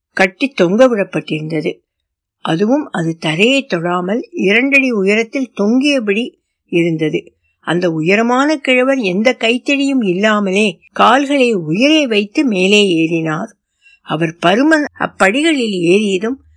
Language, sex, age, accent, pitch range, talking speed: Tamil, female, 60-79, native, 175-255 Hz, 45 wpm